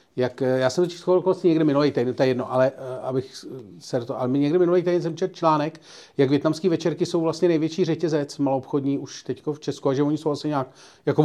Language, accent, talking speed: Czech, native, 215 wpm